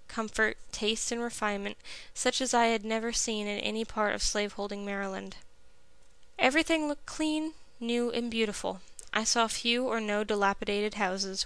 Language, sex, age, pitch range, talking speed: English, female, 10-29, 205-235 Hz, 150 wpm